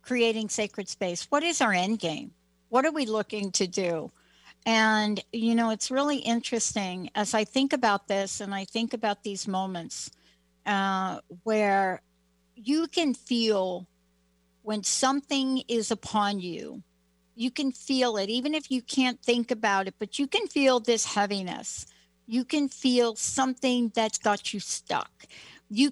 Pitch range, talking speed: 195-245 Hz, 155 wpm